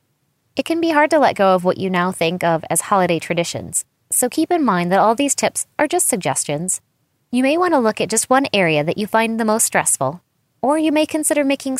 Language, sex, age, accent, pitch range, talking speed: English, female, 20-39, American, 170-230 Hz, 240 wpm